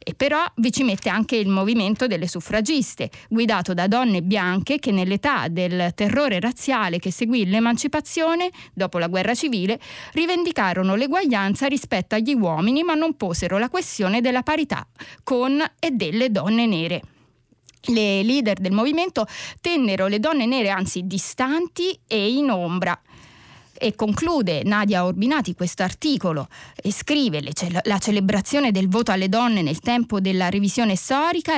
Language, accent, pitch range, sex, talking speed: Italian, native, 190-270 Hz, female, 145 wpm